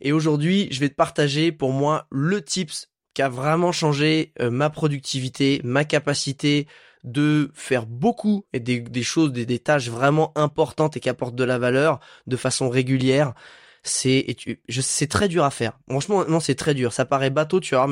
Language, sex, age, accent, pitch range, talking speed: French, male, 20-39, French, 125-150 Hz, 195 wpm